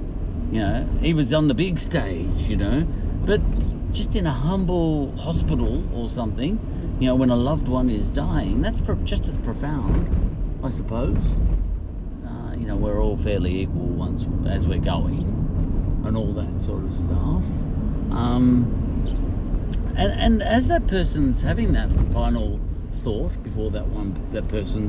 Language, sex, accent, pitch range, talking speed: English, male, Australian, 85-115 Hz, 155 wpm